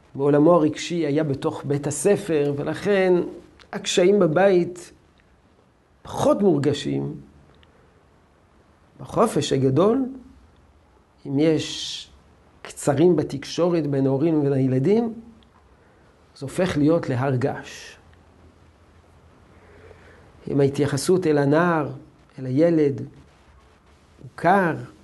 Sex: male